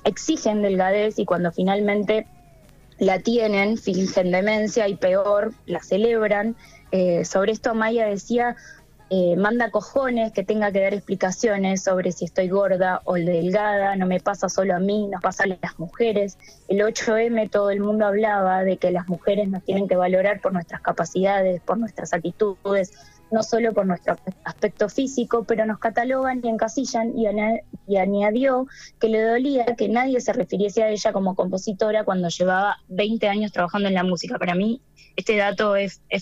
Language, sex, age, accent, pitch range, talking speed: Spanish, female, 20-39, Argentinian, 180-215 Hz, 165 wpm